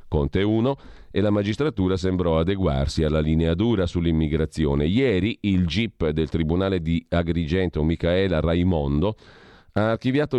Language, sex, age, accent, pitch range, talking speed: Italian, male, 40-59, native, 80-100 Hz, 125 wpm